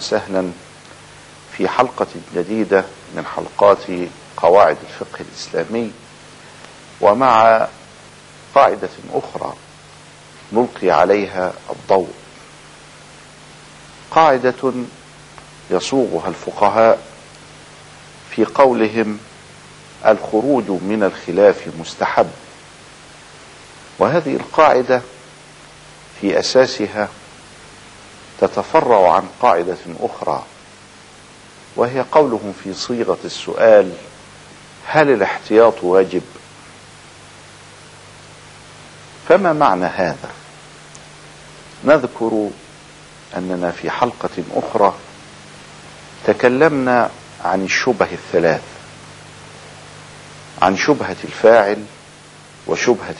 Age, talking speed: 50-69, 65 wpm